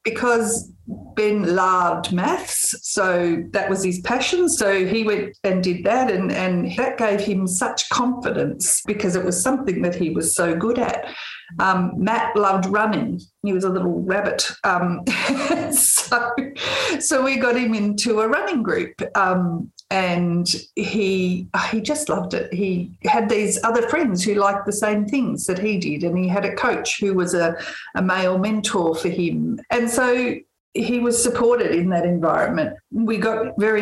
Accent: Australian